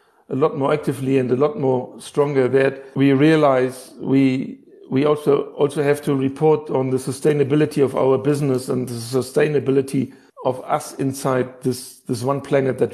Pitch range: 135-150 Hz